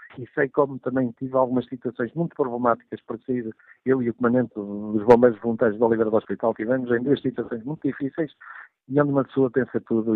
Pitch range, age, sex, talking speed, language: 110-135 Hz, 50-69, male, 195 wpm, Portuguese